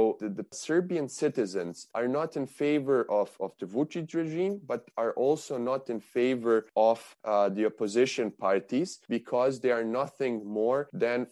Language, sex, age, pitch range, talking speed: Turkish, male, 20-39, 120-165 Hz, 165 wpm